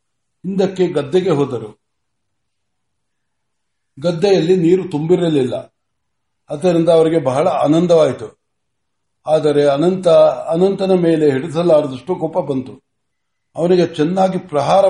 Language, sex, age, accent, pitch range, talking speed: Kannada, male, 60-79, native, 135-180 Hz, 80 wpm